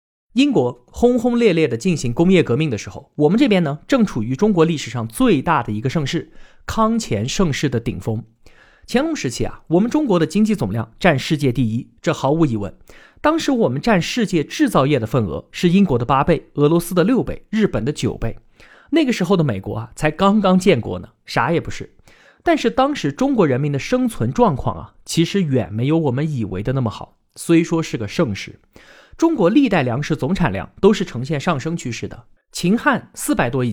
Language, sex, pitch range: Chinese, male, 120-205 Hz